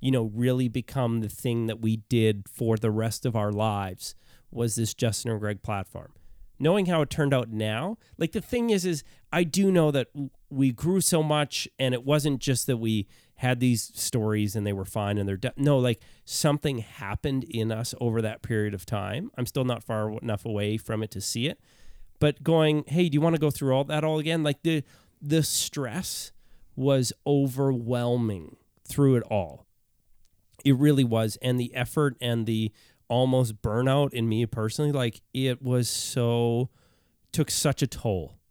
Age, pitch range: 30-49, 110-145 Hz